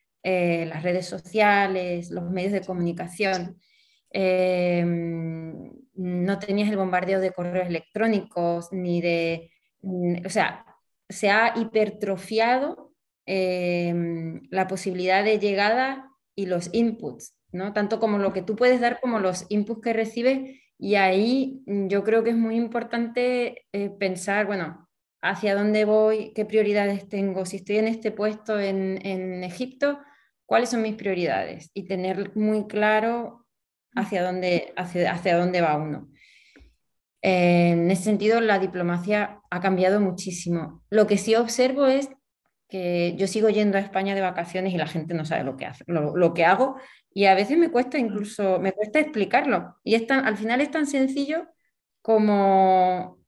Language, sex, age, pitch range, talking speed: Spanish, female, 20-39, 185-230 Hz, 140 wpm